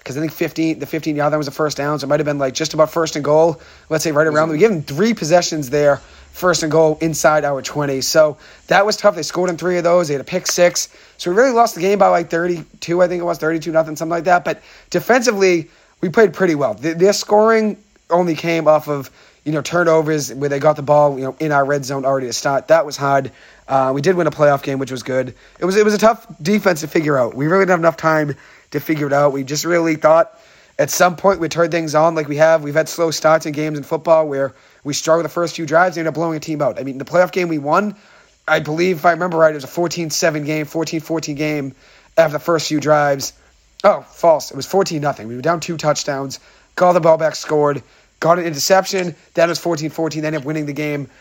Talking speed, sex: 265 wpm, male